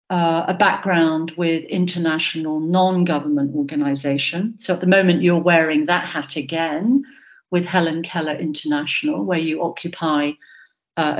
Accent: British